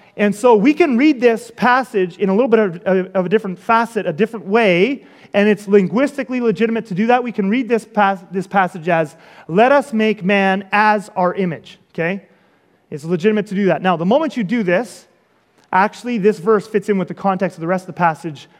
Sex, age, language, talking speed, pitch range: male, 30-49, English, 215 wpm, 200-255 Hz